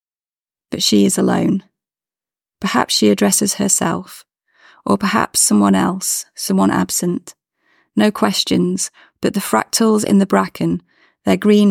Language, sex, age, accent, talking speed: English, female, 30-49, British, 125 wpm